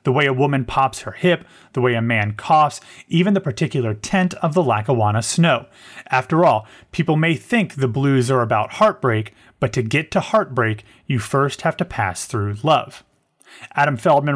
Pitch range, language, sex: 120-155 Hz, English, male